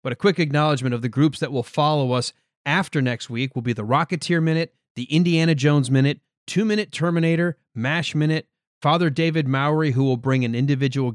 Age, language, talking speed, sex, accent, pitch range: 30-49, English, 195 wpm, male, American, 130-165 Hz